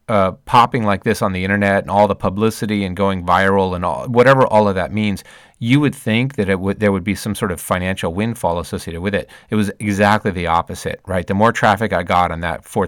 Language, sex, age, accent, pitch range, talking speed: English, male, 30-49, American, 90-105 Hz, 240 wpm